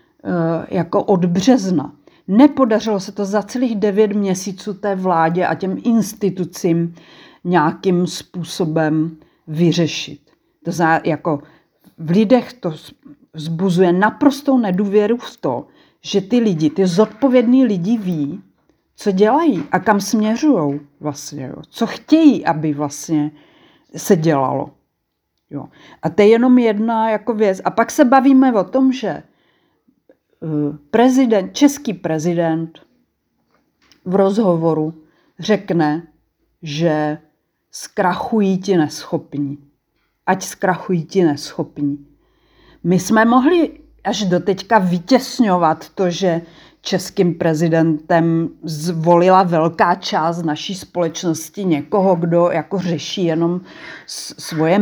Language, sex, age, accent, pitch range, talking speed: Czech, female, 50-69, native, 160-210 Hz, 110 wpm